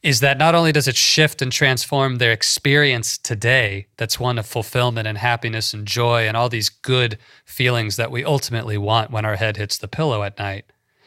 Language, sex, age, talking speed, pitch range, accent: English, male, 30-49, 200 wpm, 110-135 Hz, American